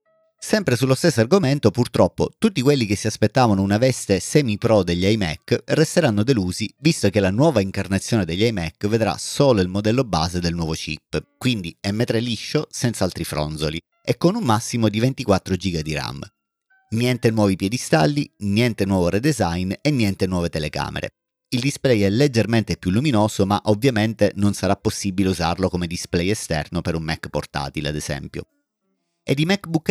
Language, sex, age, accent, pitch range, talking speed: Italian, male, 30-49, native, 95-125 Hz, 160 wpm